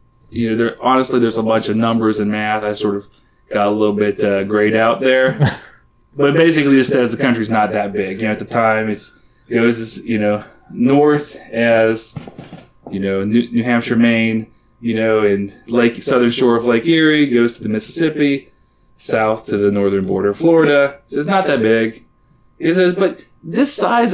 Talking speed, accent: 195 wpm, American